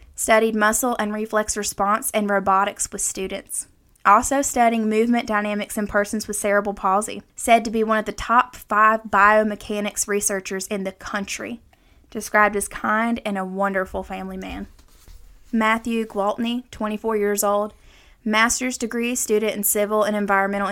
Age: 10-29